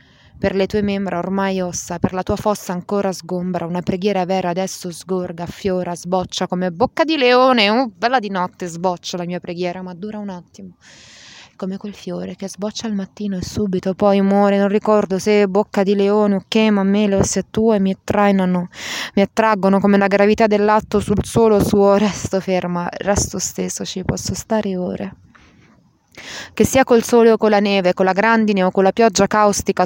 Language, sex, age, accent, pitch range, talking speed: Italian, female, 20-39, native, 190-230 Hz, 185 wpm